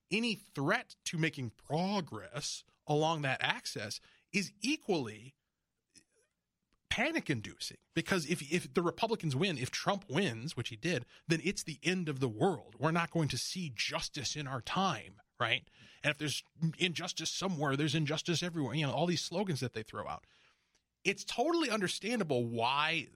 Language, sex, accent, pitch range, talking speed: English, male, American, 125-175 Hz, 160 wpm